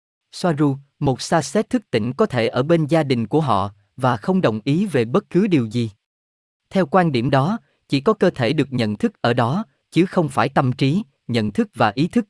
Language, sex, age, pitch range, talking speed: Vietnamese, male, 20-39, 115-170 Hz, 225 wpm